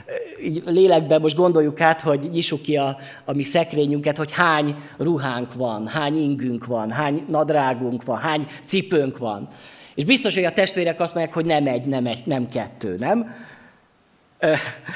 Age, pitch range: 30-49, 135-175 Hz